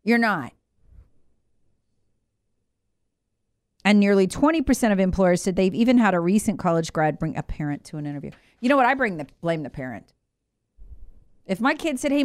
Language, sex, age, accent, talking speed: English, female, 40-59, American, 170 wpm